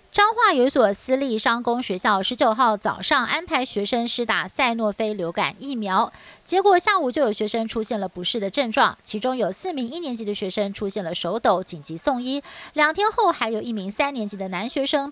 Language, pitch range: Chinese, 205-295 Hz